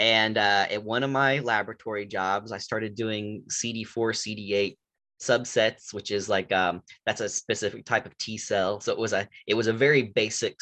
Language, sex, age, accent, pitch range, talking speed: English, male, 10-29, American, 100-120 Hz, 190 wpm